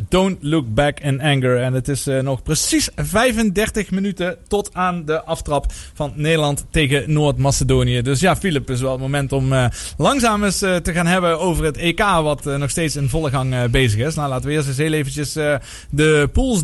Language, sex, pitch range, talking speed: Dutch, male, 140-185 Hz, 215 wpm